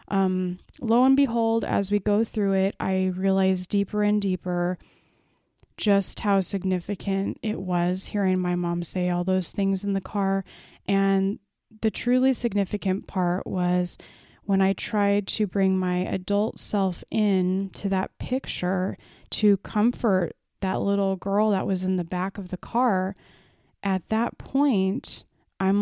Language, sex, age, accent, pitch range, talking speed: English, female, 20-39, American, 190-215 Hz, 150 wpm